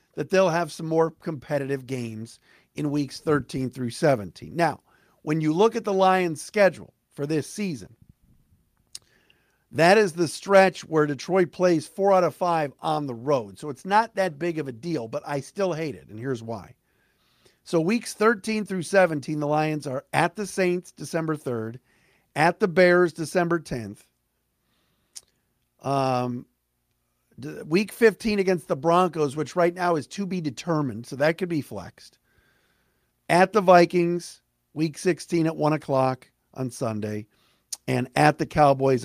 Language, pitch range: English, 130-185 Hz